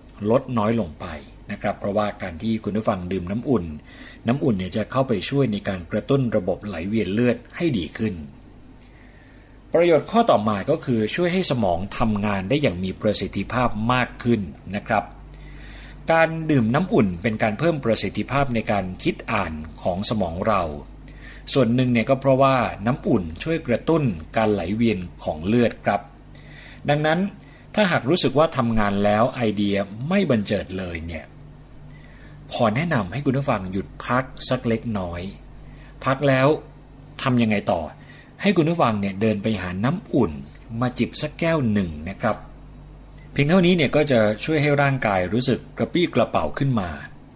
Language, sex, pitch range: Thai, male, 100-135 Hz